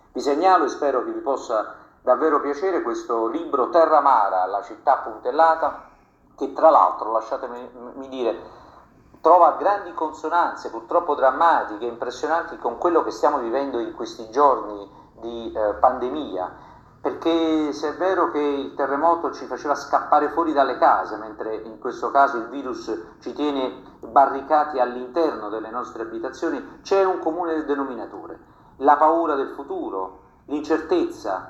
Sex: male